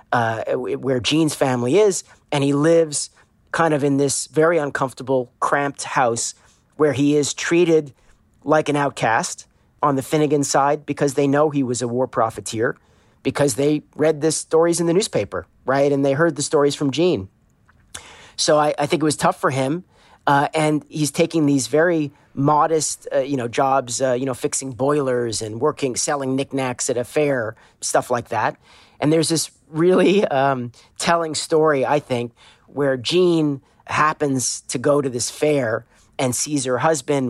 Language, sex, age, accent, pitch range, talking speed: English, male, 40-59, American, 125-150 Hz, 170 wpm